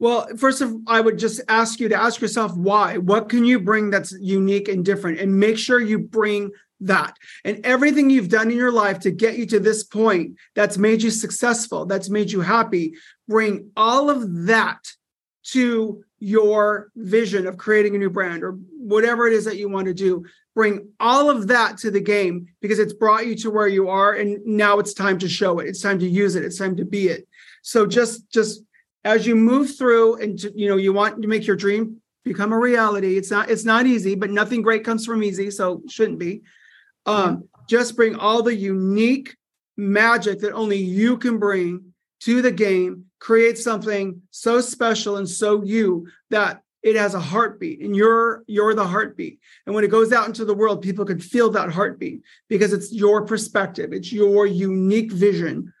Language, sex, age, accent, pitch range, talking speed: English, male, 30-49, American, 200-225 Hz, 200 wpm